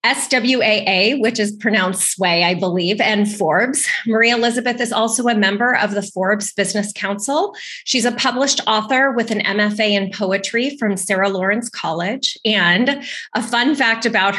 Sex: female